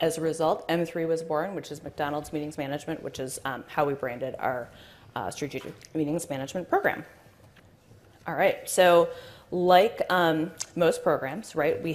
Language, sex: English, female